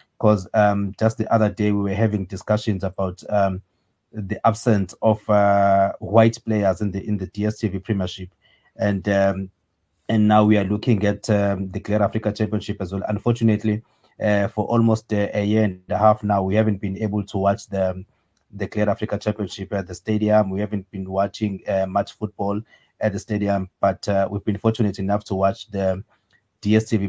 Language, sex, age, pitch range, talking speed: English, male, 30-49, 100-110 Hz, 185 wpm